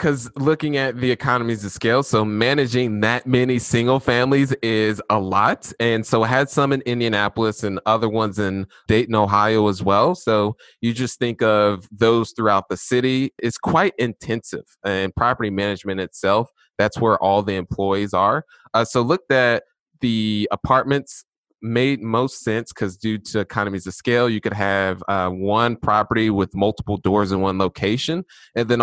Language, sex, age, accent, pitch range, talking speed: English, male, 20-39, American, 100-120 Hz, 170 wpm